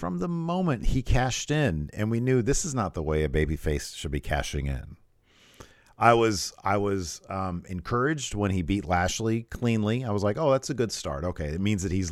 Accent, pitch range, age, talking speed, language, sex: American, 90-120 Hz, 40-59, 225 wpm, English, male